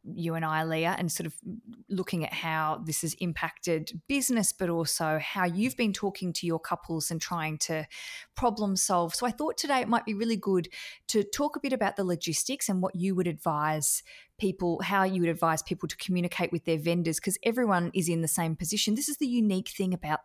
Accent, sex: Australian, female